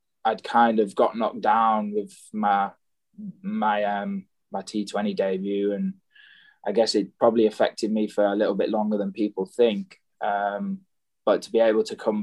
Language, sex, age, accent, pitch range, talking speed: English, male, 20-39, British, 100-140 Hz, 170 wpm